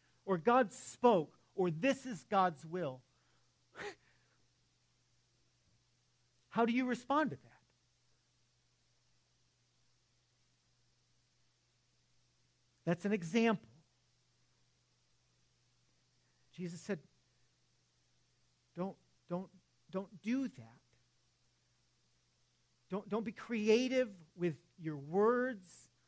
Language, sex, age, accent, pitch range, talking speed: English, male, 50-69, American, 120-195 Hz, 70 wpm